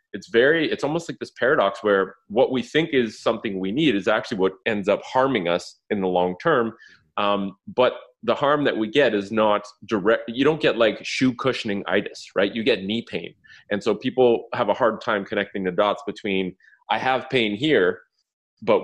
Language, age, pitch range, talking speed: English, 30-49, 90-115 Hz, 205 wpm